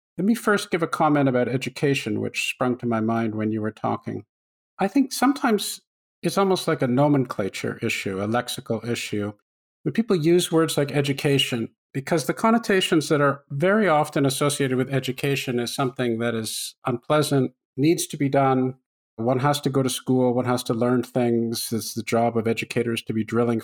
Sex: male